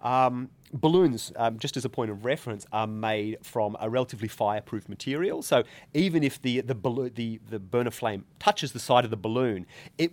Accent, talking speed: Australian, 195 wpm